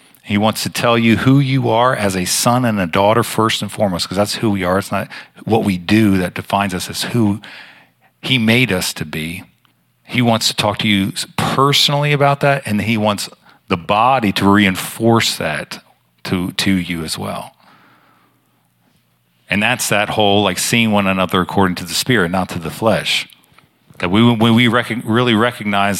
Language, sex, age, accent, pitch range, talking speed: English, male, 40-59, American, 95-115 Hz, 190 wpm